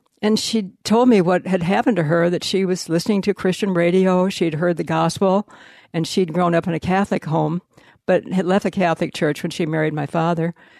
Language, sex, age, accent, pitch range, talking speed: English, female, 60-79, American, 170-205 Hz, 215 wpm